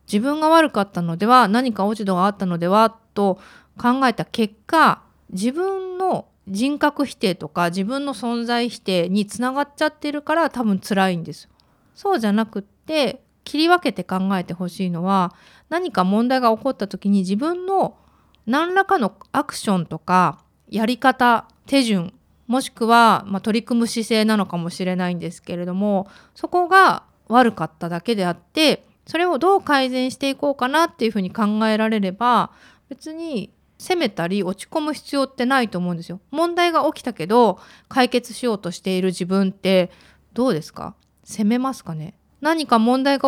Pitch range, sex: 190-275 Hz, female